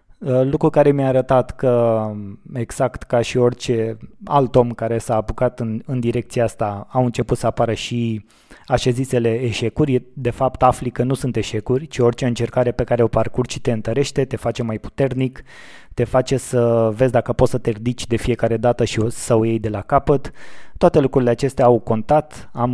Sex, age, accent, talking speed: male, 20-39, native, 185 wpm